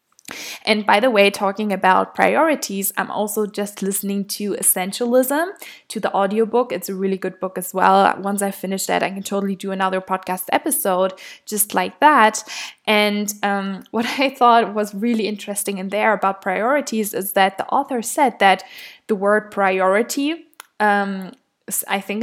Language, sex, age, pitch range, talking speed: English, female, 10-29, 190-225 Hz, 160 wpm